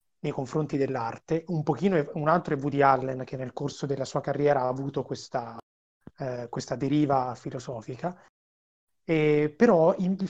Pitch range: 140-175 Hz